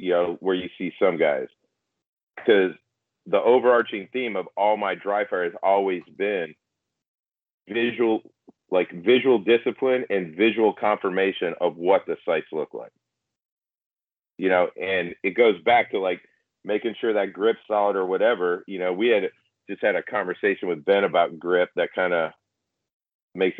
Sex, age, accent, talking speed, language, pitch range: male, 40-59, American, 160 wpm, English, 95-120 Hz